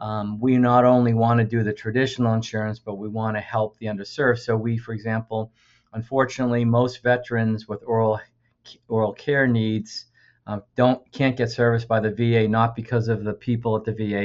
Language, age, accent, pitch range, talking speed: English, 50-69, American, 110-125 Hz, 190 wpm